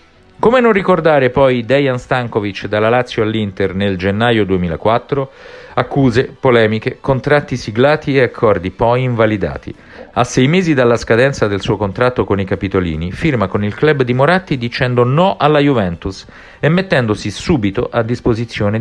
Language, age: Italian, 40-59